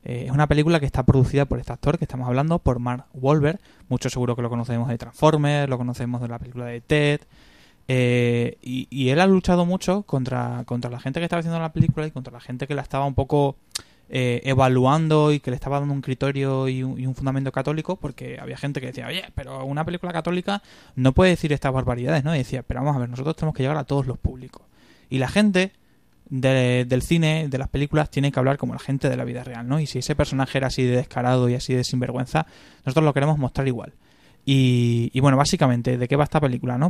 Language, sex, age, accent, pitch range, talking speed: Spanish, male, 20-39, Spanish, 125-150 Hz, 240 wpm